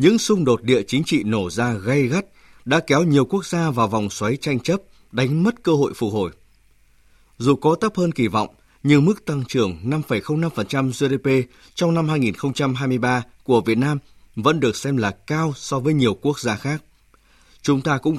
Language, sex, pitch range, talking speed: Vietnamese, male, 120-155 Hz, 190 wpm